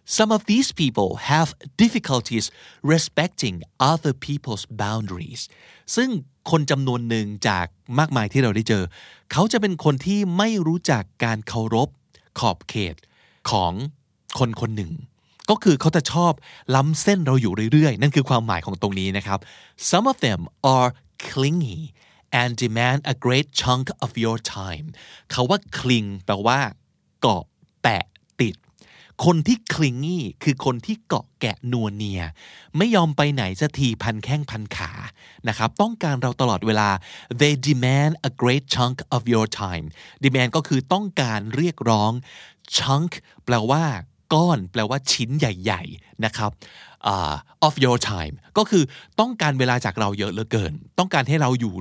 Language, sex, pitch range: Thai, male, 110-150 Hz